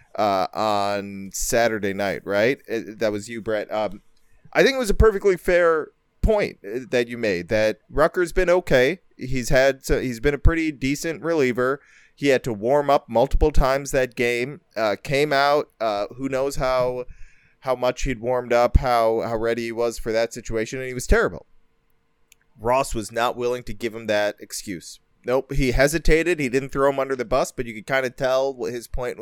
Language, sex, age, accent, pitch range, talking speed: English, male, 30-49, American, 115-140 Hz, 195 wpm